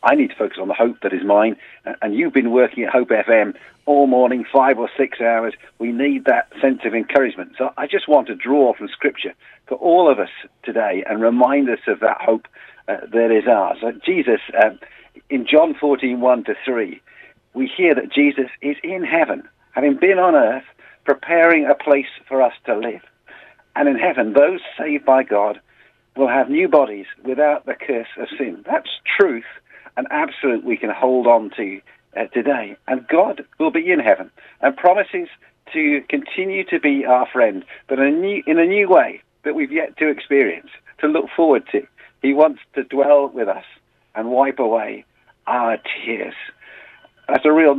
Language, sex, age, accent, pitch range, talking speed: English, male, 50-69, British, 125-190 Hz, 185 wpm